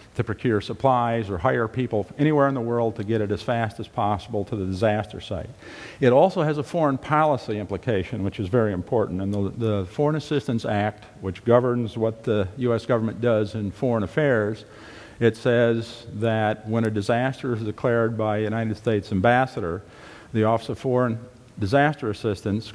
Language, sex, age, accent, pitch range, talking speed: English, male, 50-69, American, 105-125 Hz, 175 wpm